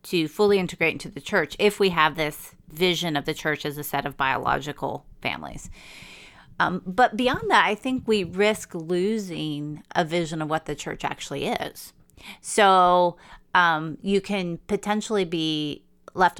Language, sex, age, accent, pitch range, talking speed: English, female, 30-49, American, 155-190 Hz, 160 wpm